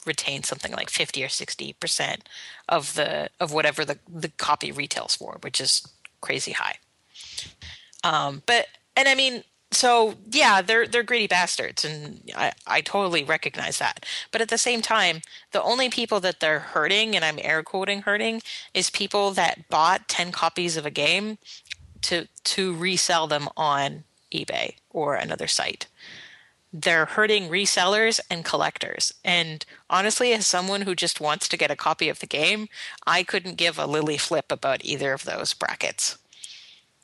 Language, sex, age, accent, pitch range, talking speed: English, female, 30-49, American, 165-215 Hz, 165 wpm